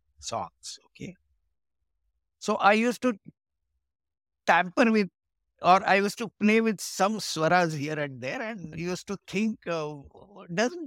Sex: male